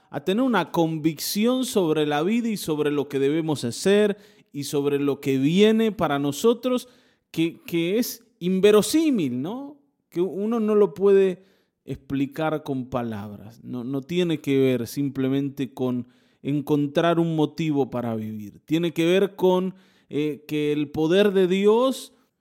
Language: Spanish